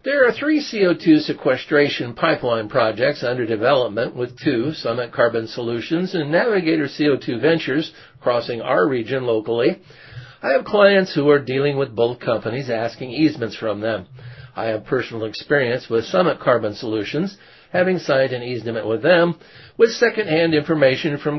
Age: 50-69